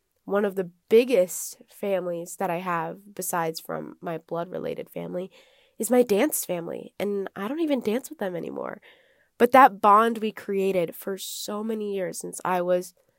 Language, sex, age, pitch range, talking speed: English, female, 20-39, 180-230 Hz, 170 wpm